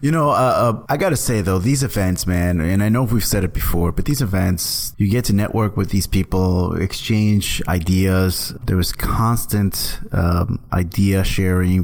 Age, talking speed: 30-49, 190 wpm